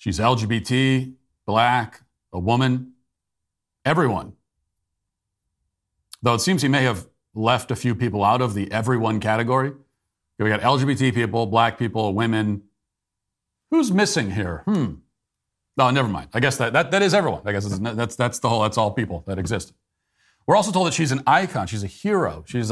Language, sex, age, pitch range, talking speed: English, male, 40-59, 100-125 Hz, 175 wpm